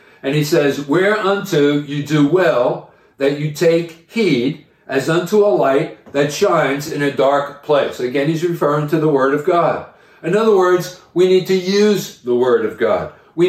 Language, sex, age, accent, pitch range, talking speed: English, male, 50-69, American, 145-185 Hz, 180 wpm